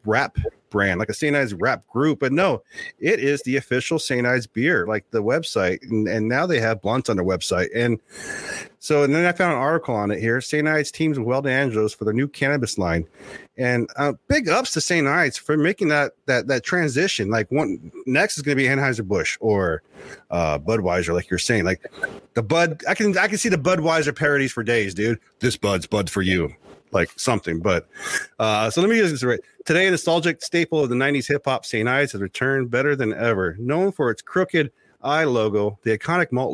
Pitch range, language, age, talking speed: 110-145 Hz, English, 30-49, 220 wpm